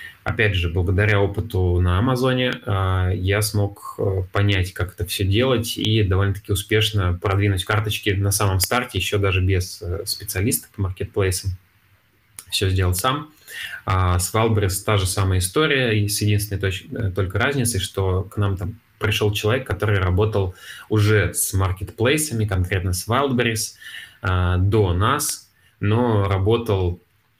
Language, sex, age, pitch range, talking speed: Russian, male, 20-39, 95-110 Hz, 125 wpm